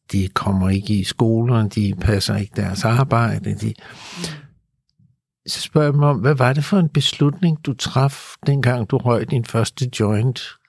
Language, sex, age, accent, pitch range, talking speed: Danish, male, 60-79, native, 105-145 Hz, 155 wpm